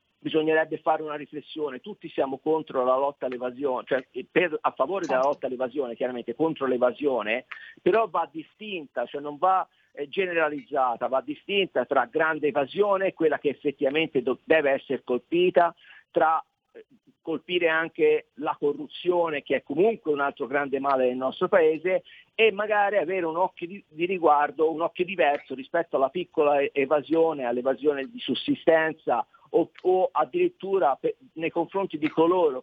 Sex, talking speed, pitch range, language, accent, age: male, 140 wpm, 140-190 Hz, Italian, native, 50-69